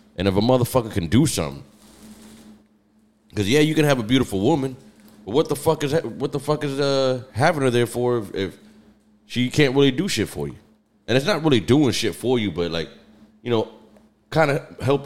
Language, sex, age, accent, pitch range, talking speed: English, male, 30-49, American, 100-125 Hz, 215 wpm